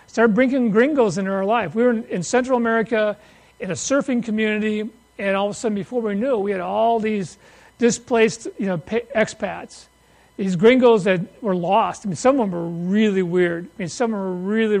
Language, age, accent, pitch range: English, 40-59, American, 200-240 Hz